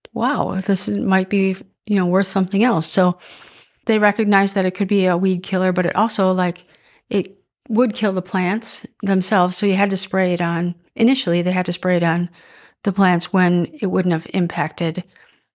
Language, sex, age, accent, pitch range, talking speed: English, female, 40-59, American, 170-195 Hz, 195 wpm